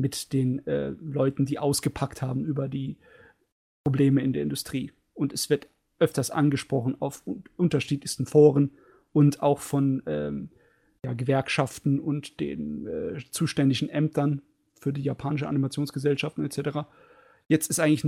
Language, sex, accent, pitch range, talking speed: German, male, German, 135-165 Hz, 130 wpm